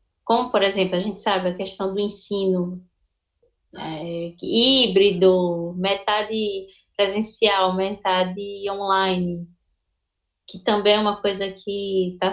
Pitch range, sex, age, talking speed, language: 195-255 Hz, female, 20-39, 105 wpm, Portuguese